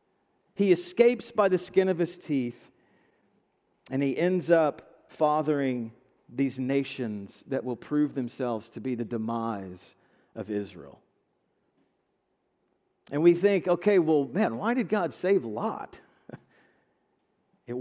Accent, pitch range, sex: American, 125-175 Hz, male